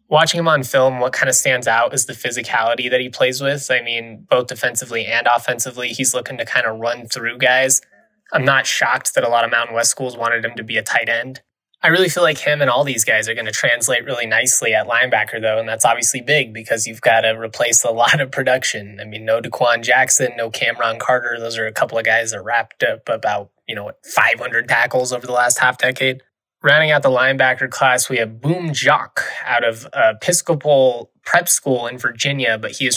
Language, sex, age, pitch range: English, male, 20-39, 115-130 Hz